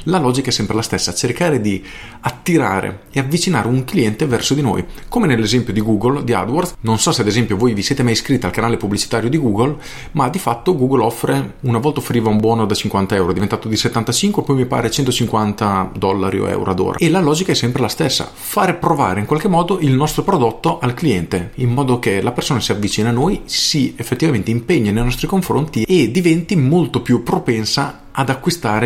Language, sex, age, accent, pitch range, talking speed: Italian, male, 40-59, native, 105-135 Hz, 210 wpm